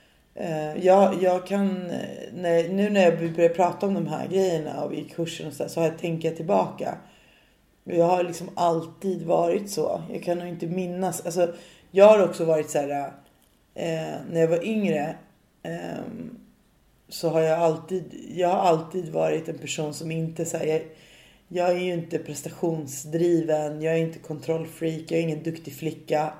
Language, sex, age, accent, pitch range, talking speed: English, female, 30-49, Swedish, 155-180 Hz, 165 wpm